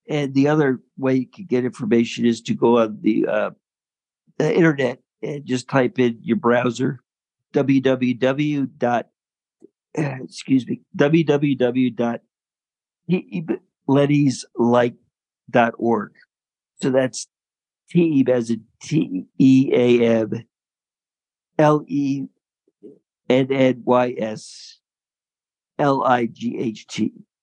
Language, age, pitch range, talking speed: English, 50-69, 120-135 Hz, 75 wpm